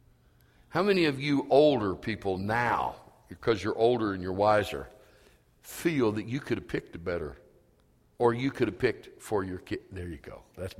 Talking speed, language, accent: 185 wpm, English, American